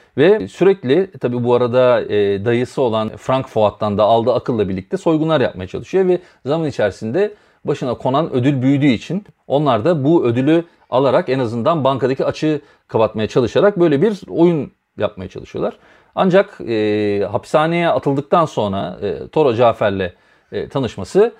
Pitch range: 110-155 Hz